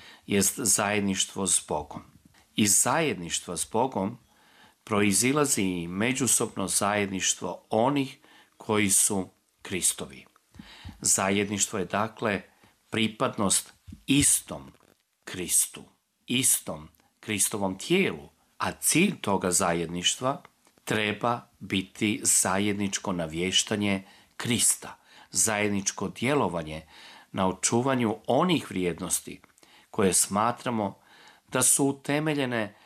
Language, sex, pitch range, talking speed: Croatian, male, 95-120 Hz, 80 wpm